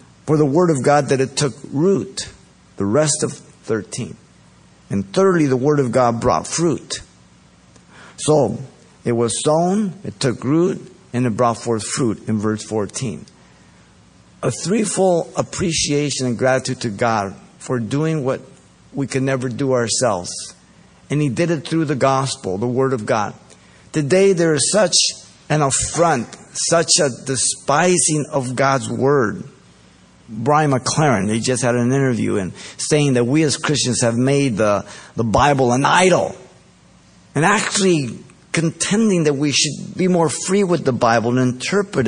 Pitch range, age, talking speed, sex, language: 115-150 Hz, 50-69, 155 wpm, male, English